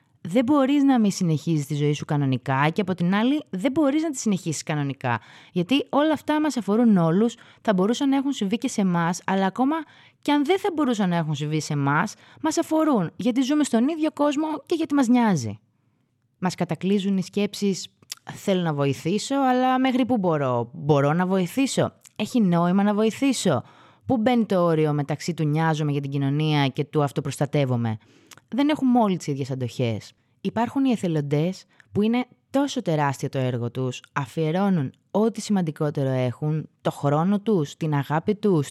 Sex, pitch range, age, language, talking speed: female, 150-235 Hz, 20-39, Greek, 175 wpm